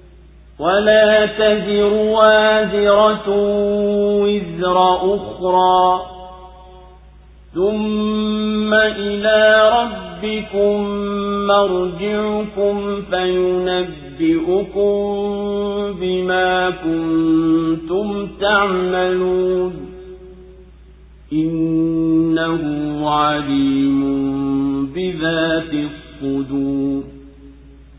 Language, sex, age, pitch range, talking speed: Swahili, male, 50-69, 180-205 Hz, 35 wpm